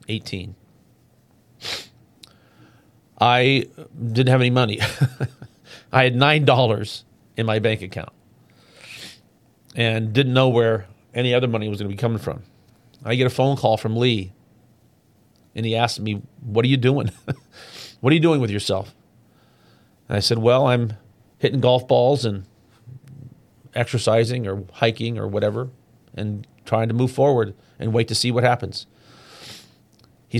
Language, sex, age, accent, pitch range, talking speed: English, male, 40-59, American, 115-135 Hz, 145 wpm